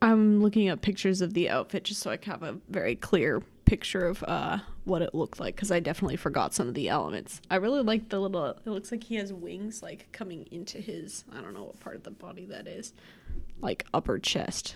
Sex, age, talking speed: female, 10-29, 235 wpm